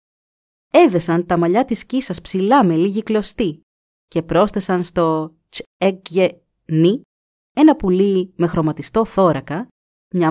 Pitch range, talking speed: 160-225 Hz, 110 wpm